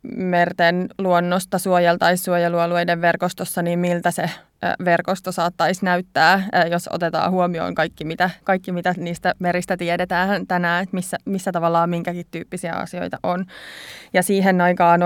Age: 20-39